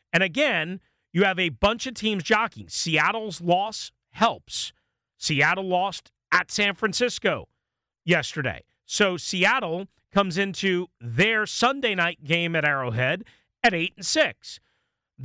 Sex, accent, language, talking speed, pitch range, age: male, American, English, 120 wpm, 165-215 Hz, 40-59